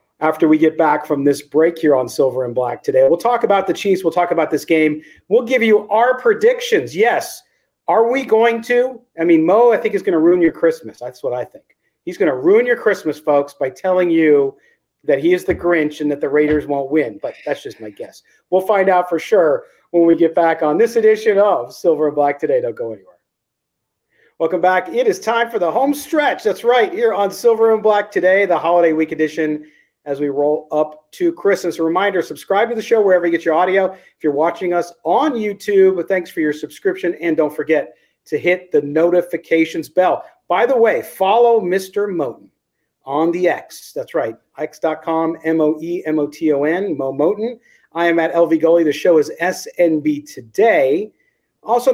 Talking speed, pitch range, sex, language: 205 wpm, 155-230 Hz, male, English